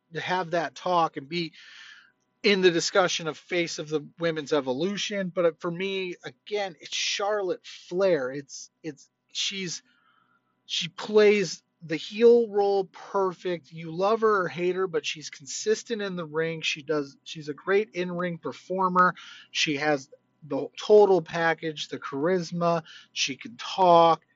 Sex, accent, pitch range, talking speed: male, American, 160-205 Hz, 150 wpm